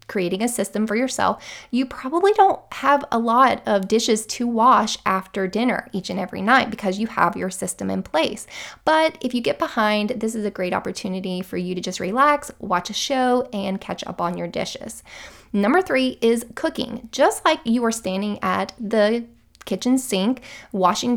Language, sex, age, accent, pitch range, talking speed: English, female, 20-39, American, 195-255 Hz, 185 wpm